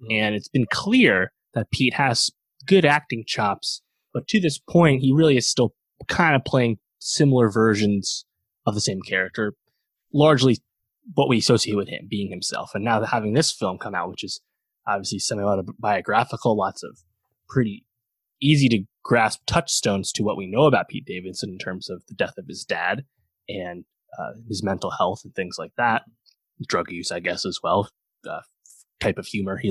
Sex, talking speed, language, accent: male, 170 wpm, English, American